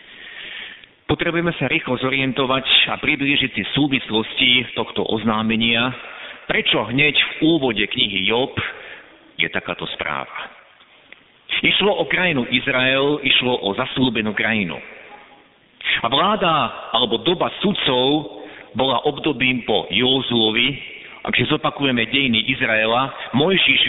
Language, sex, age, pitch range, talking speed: Slovak, male, 50-69, 120-150 Hz, 105 wpm